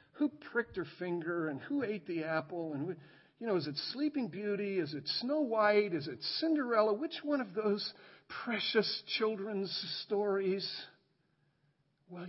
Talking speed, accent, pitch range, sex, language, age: 155 wpm, American, 160-245 Hz, male, English, 50-69